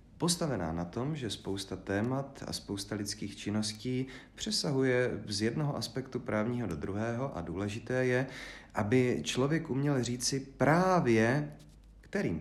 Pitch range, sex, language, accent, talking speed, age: 100-125 Hz, male, Czech, native, 125 wpm, 40-59